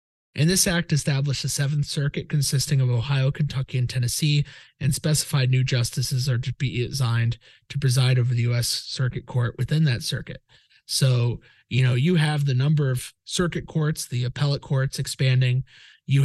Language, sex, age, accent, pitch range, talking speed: English, male, 30-49, American, 125-145 Hz, 170 wpm